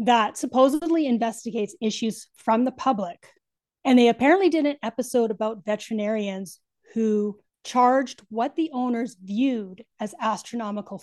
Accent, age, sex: American, 30-49, female